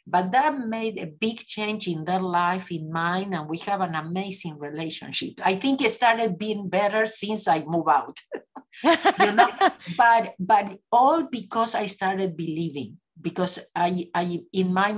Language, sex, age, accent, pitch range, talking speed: English, female, 50-69, Spanish, 165-225 Hz, 165 wpm